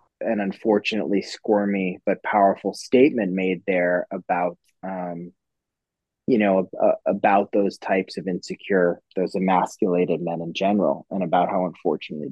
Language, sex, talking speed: English, male, 135 wpm